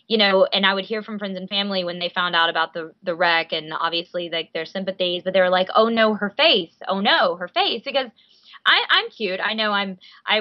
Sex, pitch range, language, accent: female, 180-210 Hz, English, American